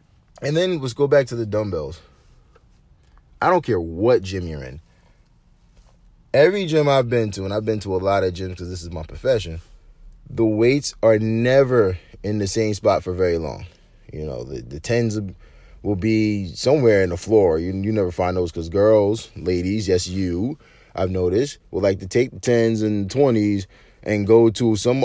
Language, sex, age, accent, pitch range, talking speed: English, male, 20-39, American, 95-120 Hz, 190 wpm